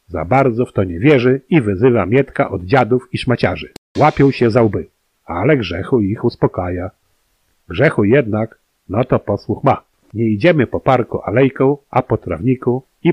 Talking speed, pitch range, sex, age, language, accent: 165 wpm, 105-135 Hz, male, 50-69, Polish, native